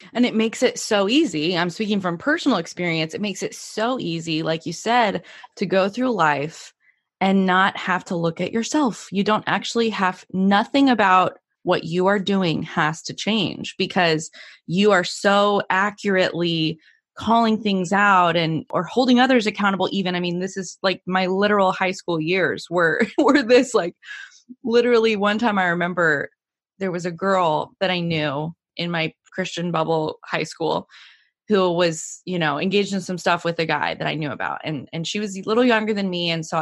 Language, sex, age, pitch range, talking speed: English, female, 20-39, 170-220 Hz, 190 wpm